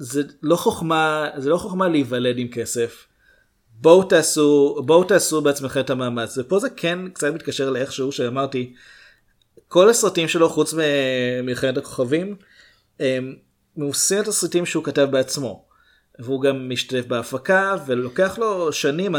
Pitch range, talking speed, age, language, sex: 125-155 Hz, 135 wpm, 30-49, Hebrew, male